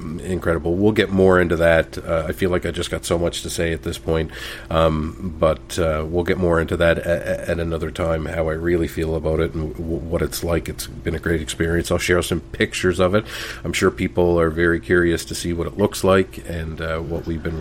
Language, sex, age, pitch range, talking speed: English, male, 40-59, 80-95 Hz, 240 wpm